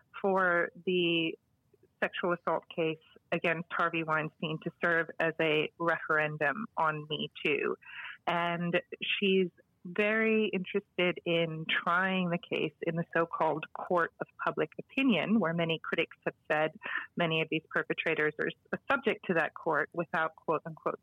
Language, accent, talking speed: English, American, 135 wpm